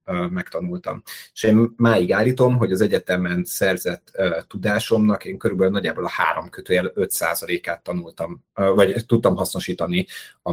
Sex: male